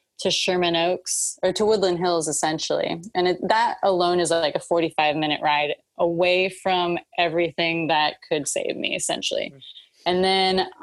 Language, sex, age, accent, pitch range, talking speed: English, female, 20-39, American, 165-190 Hz, 150 wpm